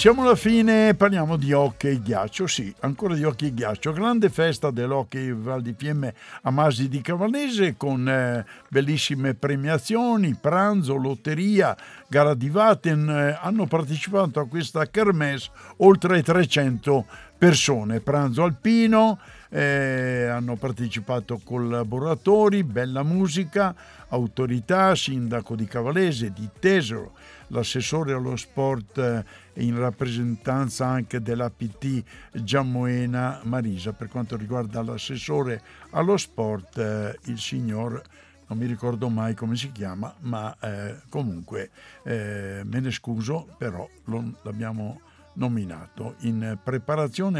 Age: 60-79